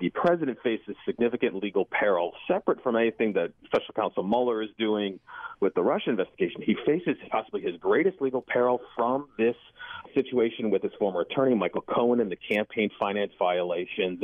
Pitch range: 115-160 Hz